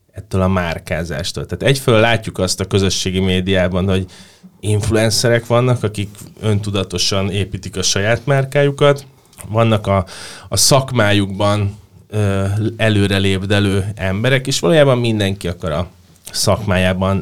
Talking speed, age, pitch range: 110 wpm, 20-39, 95-110 Hz